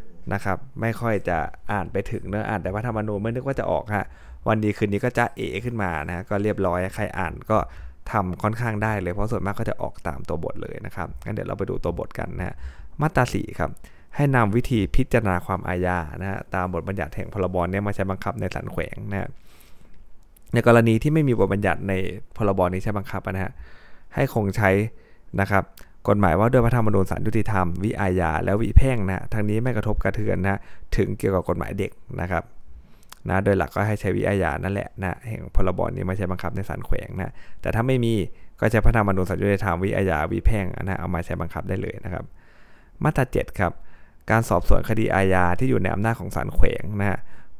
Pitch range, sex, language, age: 90-110 Hz, male, Thai, 20-39